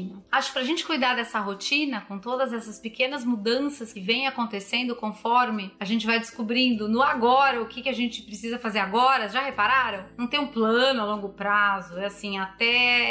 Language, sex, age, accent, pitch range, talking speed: Portuguese, female, 30-49, Brazilian, 210-260 Hz, 190 wpm